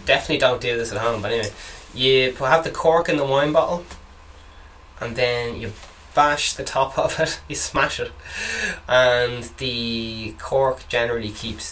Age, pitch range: 10-29, 80-115 Hz